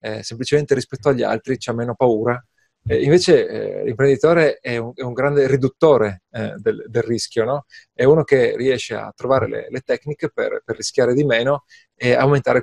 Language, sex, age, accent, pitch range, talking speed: Italian, male, 30-49, native, 120-160 Hz, 175 wpm